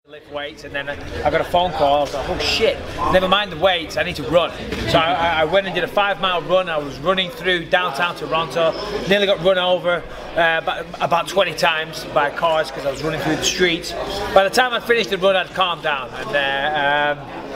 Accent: British